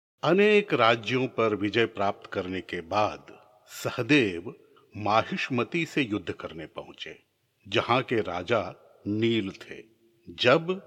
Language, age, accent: Hindi, 60-79, native